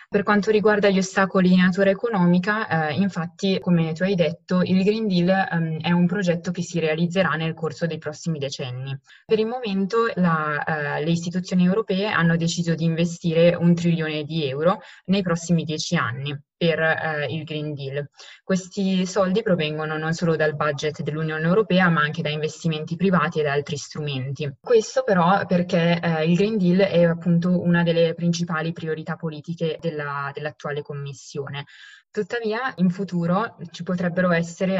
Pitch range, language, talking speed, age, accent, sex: 155-180 Hz, Italian, 160 wpm, 20-39, native, female